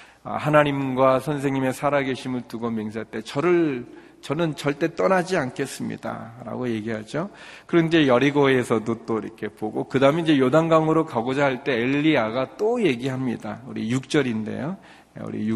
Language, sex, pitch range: Korean, male, 115-140 Hz